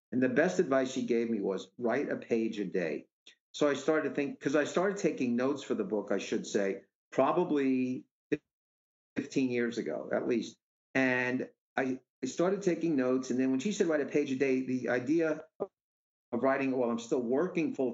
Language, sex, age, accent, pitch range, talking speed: English, male, 50-69, American, 120-155 Hz, 195 wpm